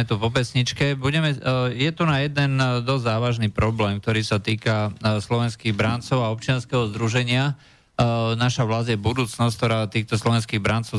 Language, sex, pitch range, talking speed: Slovak, male, 105-125 Hz, 145 wpm